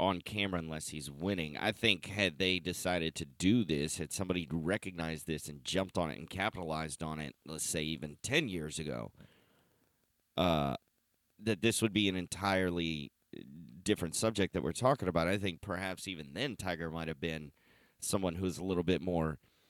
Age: 30-49